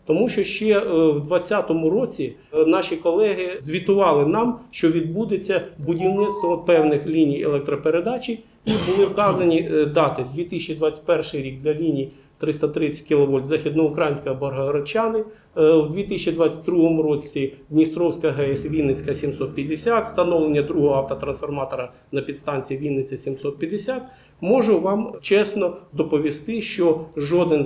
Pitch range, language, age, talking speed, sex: 150-185 Hz, Ukrainian, 40-59, 105 wpm, male